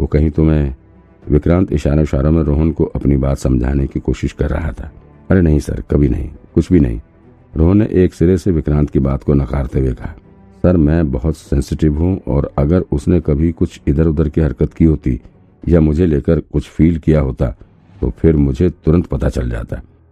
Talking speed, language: 205 wpm, Hindi